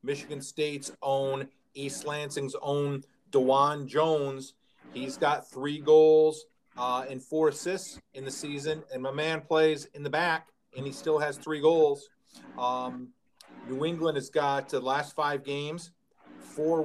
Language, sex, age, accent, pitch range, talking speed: English, male, 40-59, American, 130-160 Hz, 150 wpm